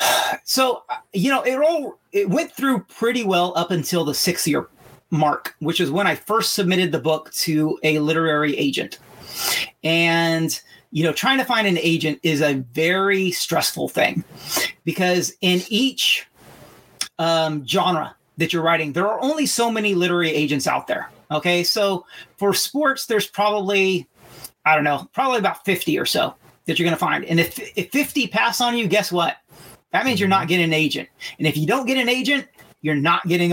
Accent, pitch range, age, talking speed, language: American, 160-210 Hz, 40-59, 185 wpm, English